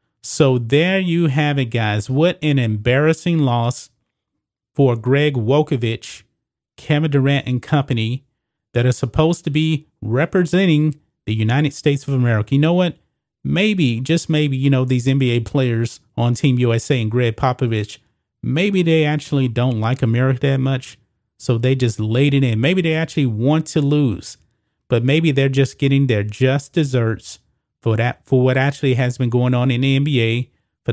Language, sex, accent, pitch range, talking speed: English, male, American, 115-145 Hz, 165 wpm